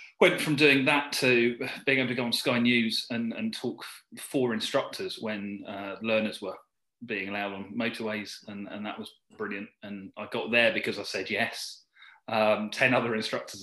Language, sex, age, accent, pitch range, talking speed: English, male, 30-49, British, 105-130 Hz, 185 wpm